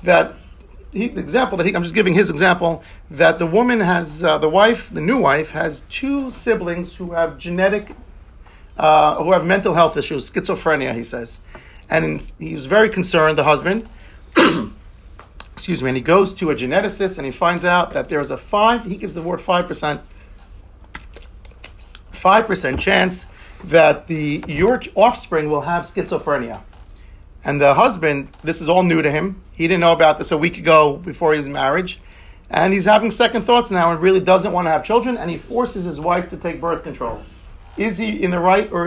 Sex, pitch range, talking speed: male, 150-195 Hz, 190 wpm